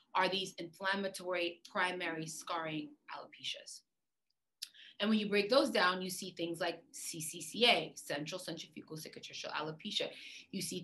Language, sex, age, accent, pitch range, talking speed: English, female, 20-39, American, 170-210 Hz, 125 wpm